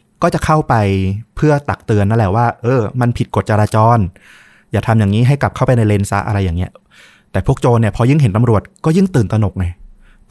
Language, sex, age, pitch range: Thai, male, 20-39, 100-130 Hz